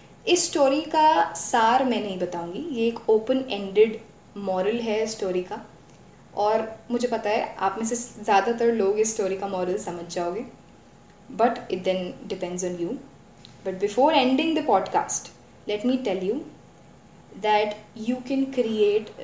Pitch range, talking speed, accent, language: 190-245 Hz, 155 wpm, native, Hindi